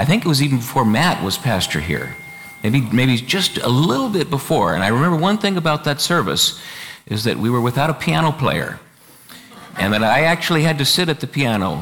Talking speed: 220 wpm